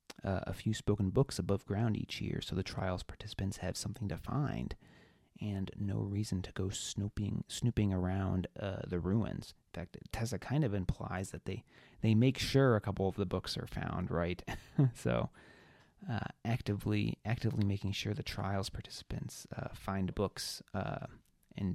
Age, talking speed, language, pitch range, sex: 30-49, 170 wpm, English, 95-120 Hz, male